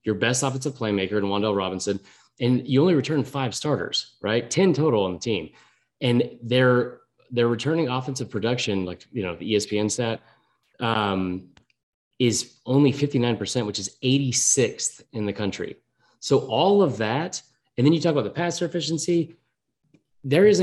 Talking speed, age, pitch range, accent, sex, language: 155 wpm, 30-49, 105-135 Hz, American, male, English